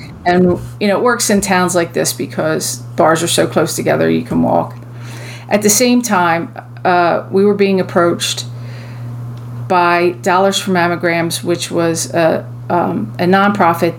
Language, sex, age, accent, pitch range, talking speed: English, female, 40-59, American, 120-180 Hz, 160 wpm